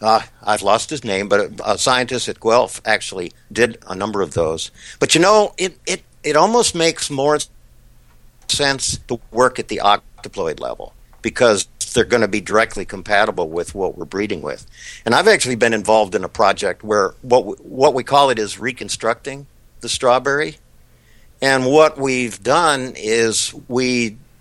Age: 50-69